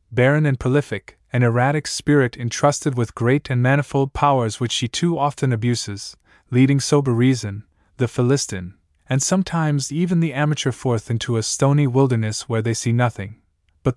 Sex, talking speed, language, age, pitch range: male, 160 wpm, English, 20-39, 110-145 Hz